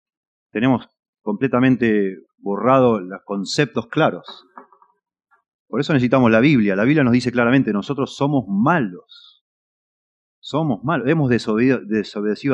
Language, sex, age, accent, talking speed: Spanish, male, 30-49, Argentinian, 110 wpm